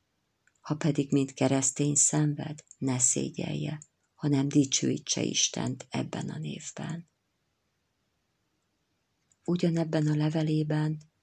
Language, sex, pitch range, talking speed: Hungarian, female, 135-155 Hz, 85 wpm